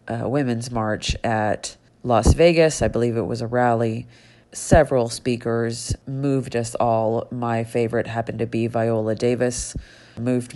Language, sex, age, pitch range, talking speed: English, female, 30-49, 115-135 Hz, 140 wpm